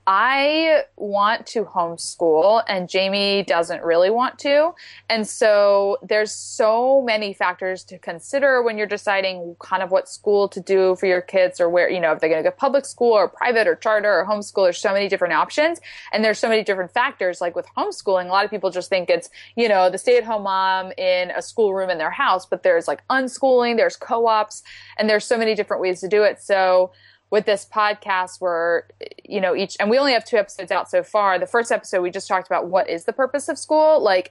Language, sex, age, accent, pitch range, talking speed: English, female, 20-39, American, 180-225 Hz, 220 wpm